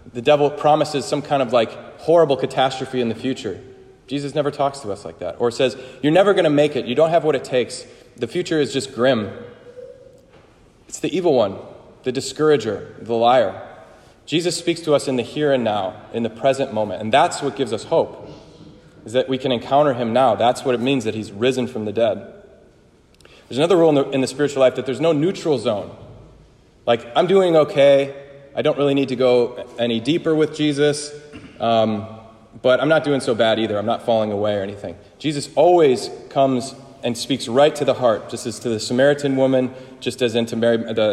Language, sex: English, male